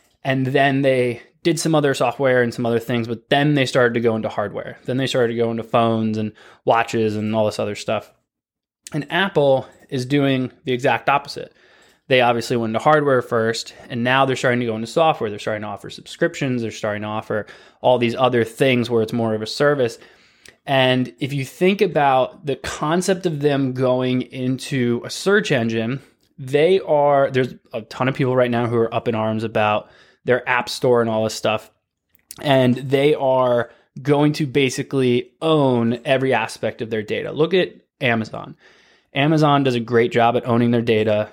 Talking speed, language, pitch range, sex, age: 195 wpm, English, 115-135 Hz, male, 20-39